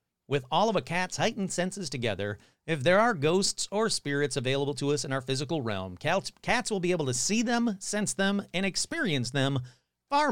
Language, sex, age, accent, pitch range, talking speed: English, male, 40-59, American, 125-190 Hz, 200 wpm